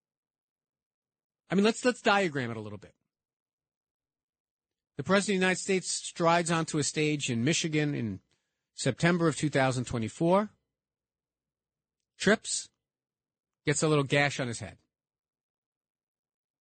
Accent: American